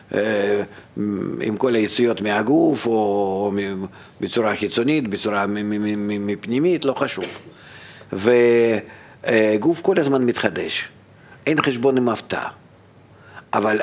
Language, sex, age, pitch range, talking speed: Hebrew, male, 50-69, 105-135 Hz, 85 wpm